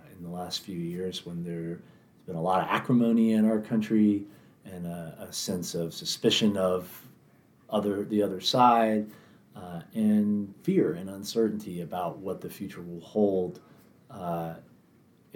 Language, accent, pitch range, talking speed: English, American, 85-110 Hz, 150 wpm